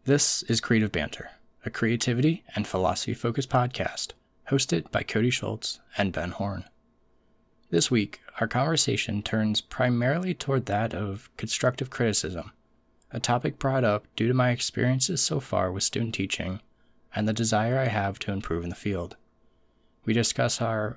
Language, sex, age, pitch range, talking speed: English, male, 20-39, 105-130 Hz, 150 wpm